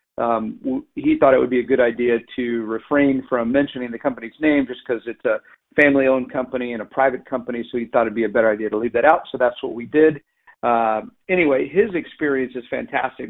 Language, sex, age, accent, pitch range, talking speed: English, male, 50-69, American, 125-145 Hz, 225 wpm